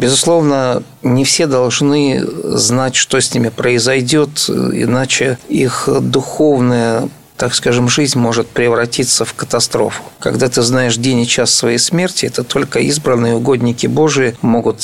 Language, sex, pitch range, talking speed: Russian, male, 120-140 Hz, 135 wpm